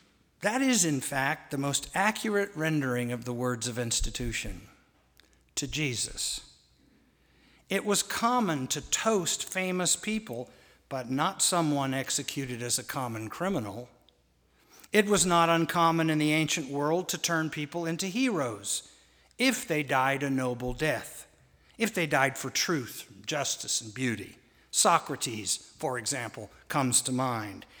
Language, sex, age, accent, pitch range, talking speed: English, male, 60-79, American, 135-190 Hz, 135 wpm